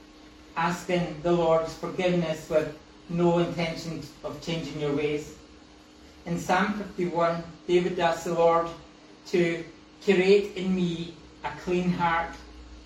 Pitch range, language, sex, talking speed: 150-180 Hz, English, male, 115 wpm